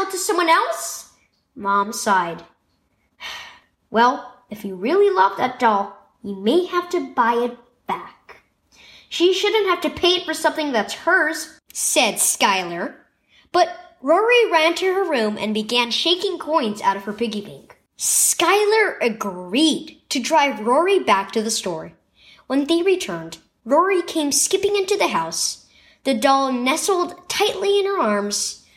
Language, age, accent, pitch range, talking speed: English, 10-29, American, 220-350 Hz, 150 wpm